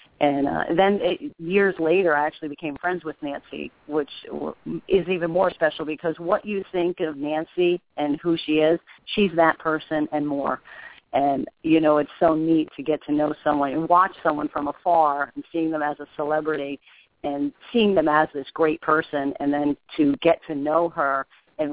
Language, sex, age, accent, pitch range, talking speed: English, female, 40-59, American, 140-160 Hz, 190 wpm